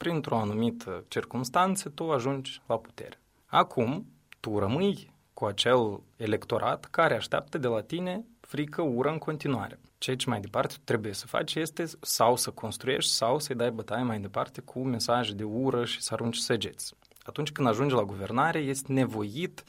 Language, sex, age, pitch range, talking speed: Romanian, male, 20-39, 110-140 Hz, 165 wpm